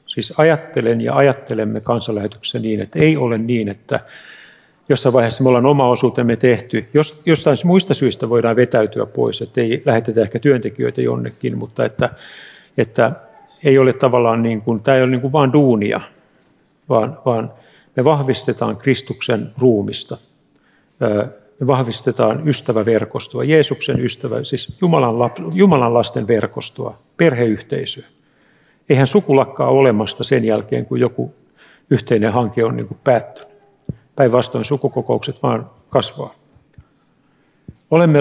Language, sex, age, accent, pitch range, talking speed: Finnish, male, 50-69, native, 115-140 Hz, 125 wpm